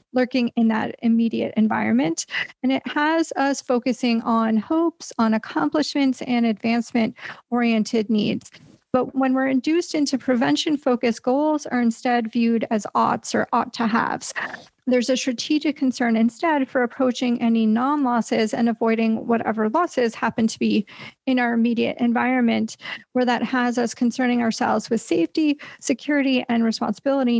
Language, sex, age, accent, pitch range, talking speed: English, female, 40-59, American, 225-260 Hz, 145 wpm